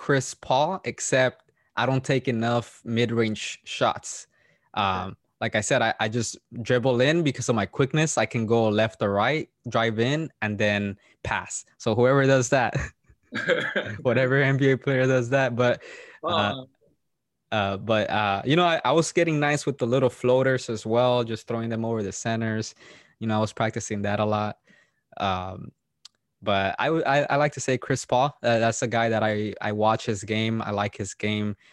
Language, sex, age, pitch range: English, male, 20-39, 105-125 Hz